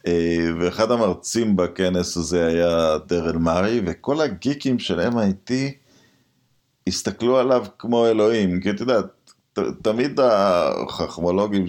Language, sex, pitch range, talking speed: Hebrew, male, 90-120 Hz, 105 wpm